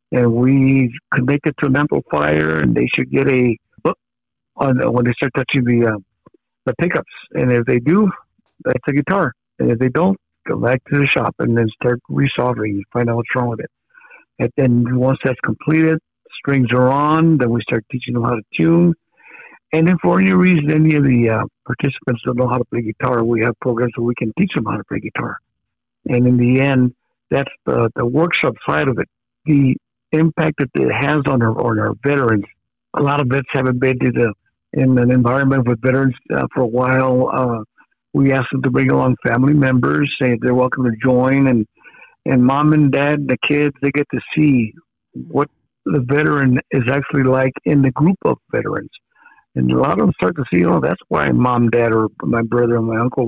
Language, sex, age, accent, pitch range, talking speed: English, male, 60-79, American, 120-145 Hz, 210 wpm